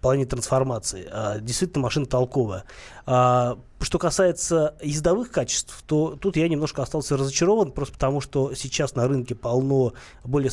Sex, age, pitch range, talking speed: male, 20-39, 125-155 Hz, 135 wpm